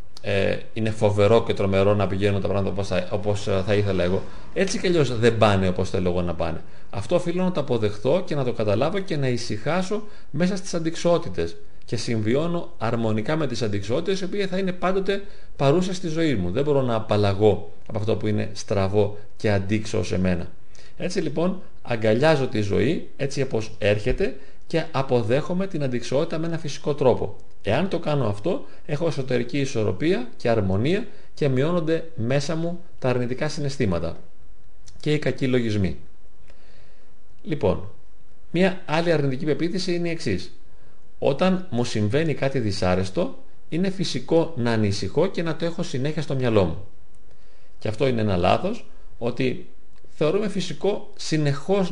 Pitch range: 105-165 Hz